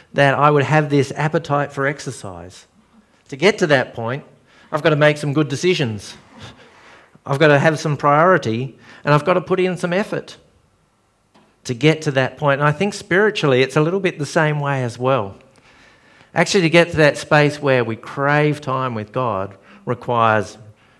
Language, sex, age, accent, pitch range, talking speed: English, male, 50-69, Australian, 115-155 Hz, 185 wpm